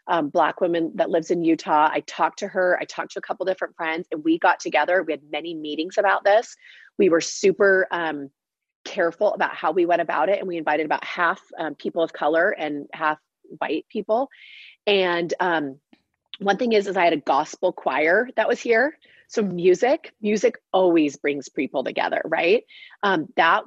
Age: 30-49